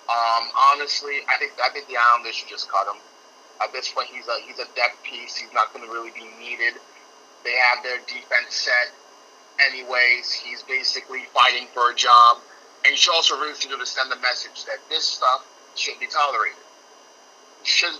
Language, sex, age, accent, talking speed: English, male, 30-49, American, 180 wpm